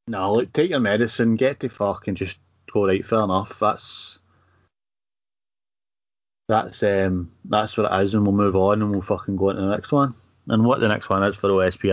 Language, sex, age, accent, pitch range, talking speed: English, male, 30-49, British, 100-125 Hz, 215 wpm